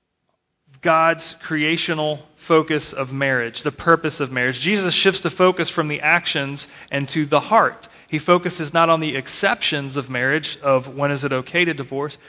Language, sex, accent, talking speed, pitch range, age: English, male, American, 170 wpm, 140-170 Hz, 30-49